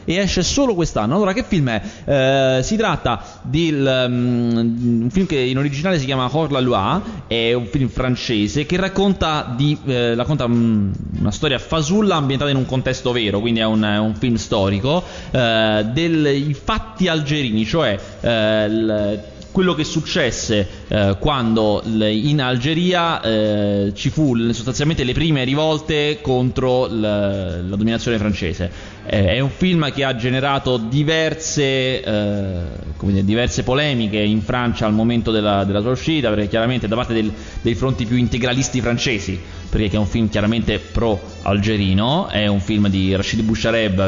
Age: 20-39